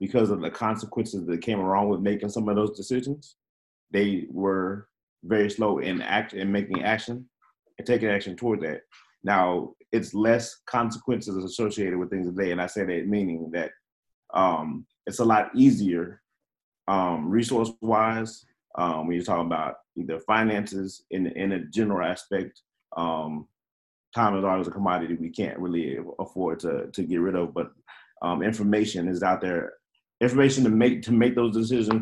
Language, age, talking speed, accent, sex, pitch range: English, 30-49, 165 wpm, American, male, 95-115 Hz